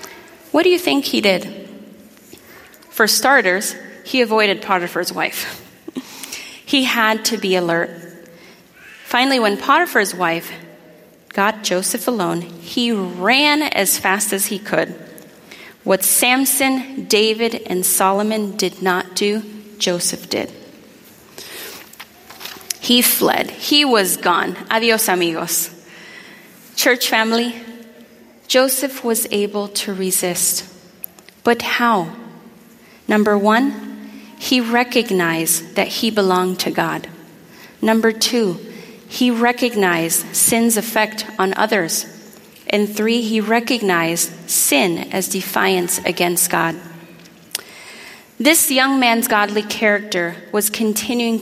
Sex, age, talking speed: female, 30-49, 105 wpm